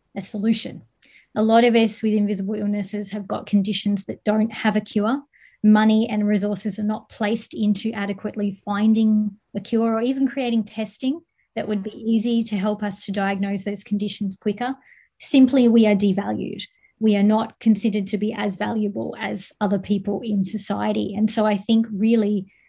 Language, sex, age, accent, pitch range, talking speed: English, female, 20-39, Australian, 205-225 Hz, 175 wpm